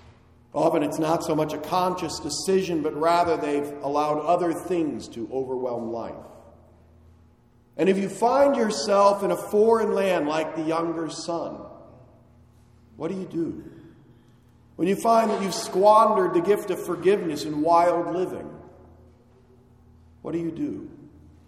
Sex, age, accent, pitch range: male, 40-59, American, 120-175 Hz